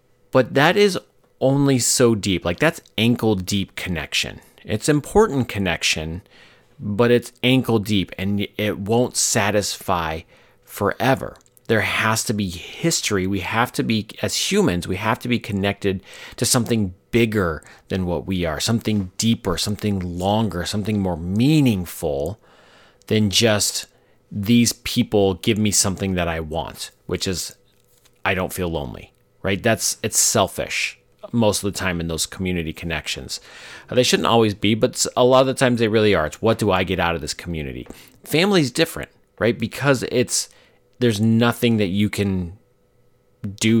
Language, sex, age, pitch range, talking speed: English, male, 40-59, 95-120 Hz, 155 wpm